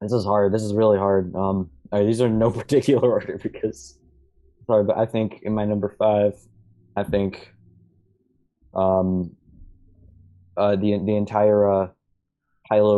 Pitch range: 95-105 Hz